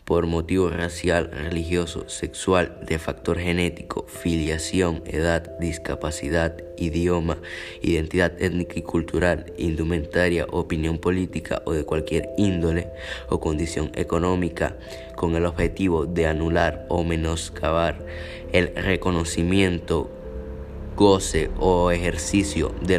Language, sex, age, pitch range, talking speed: Spanish, male, 20-39, 85-90 Hz, 100 wpm